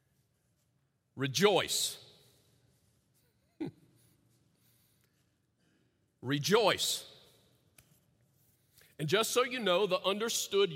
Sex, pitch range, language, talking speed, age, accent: male, 155-225 Hz, English, 55 wpm, 40-59, American